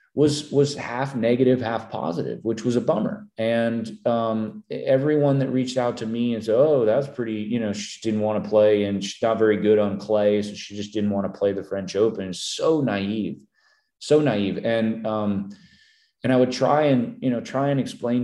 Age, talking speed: 30-49, 205 wpm